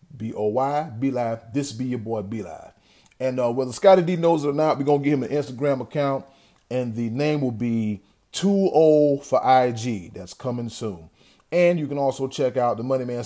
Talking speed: 215 wpm